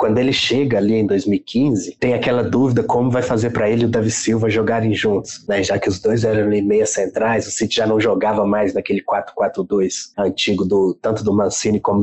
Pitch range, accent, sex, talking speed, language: 100-115 Hz, Brazilian, male, 215 wpm, Portuguese